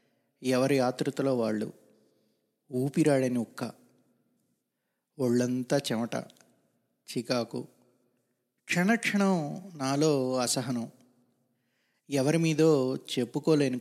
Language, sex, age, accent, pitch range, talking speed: Telugu, male, 30-49, native, 125-160 Hz, 60 wpm